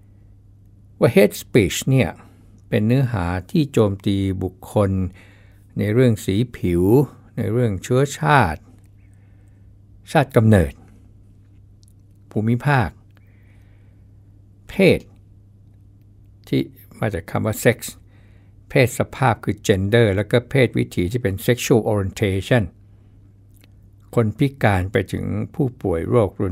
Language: Thai